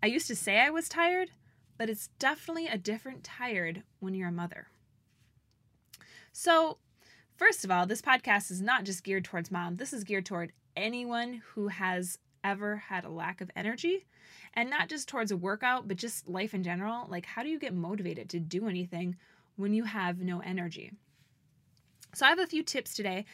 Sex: female